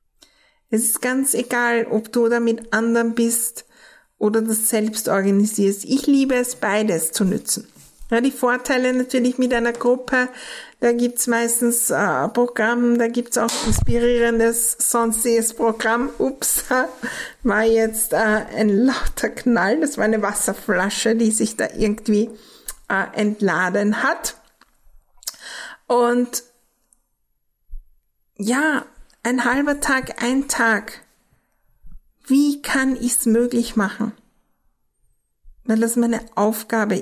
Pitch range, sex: 215-240 Hz, female